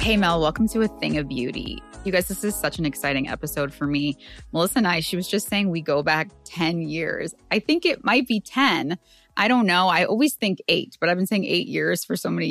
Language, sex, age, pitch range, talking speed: English, female, 20-39, 140-170 Hz, 250 wpm